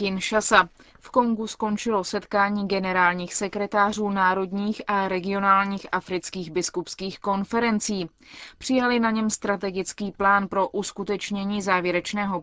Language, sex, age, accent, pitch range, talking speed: Czech, female, 20-39, native, 185-220 Hz, 100 wpm